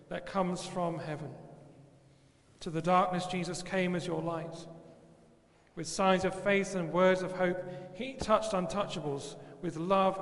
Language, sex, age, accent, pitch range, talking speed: English, male, 40-59, British, 150-190 Hz, 145 wpm